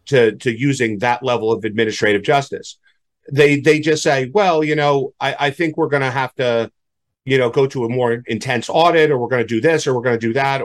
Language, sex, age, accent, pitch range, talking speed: English, male, 40-59, American, 120-150 Hz, 240 wpm